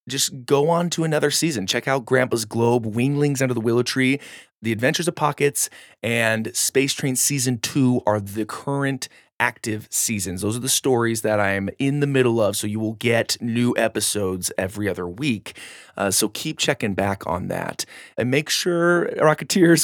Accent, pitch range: American, 105-135 Hz